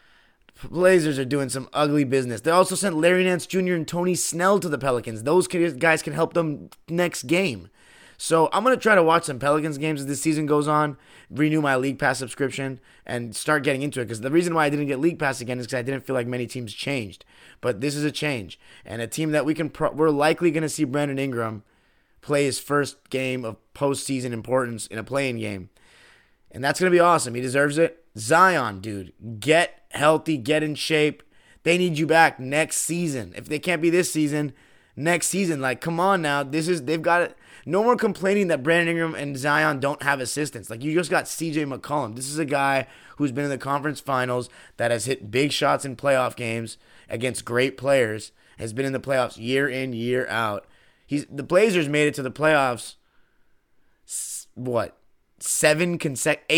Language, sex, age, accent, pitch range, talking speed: English, male, 30-49, American, 130-160 Hz, 210 wpm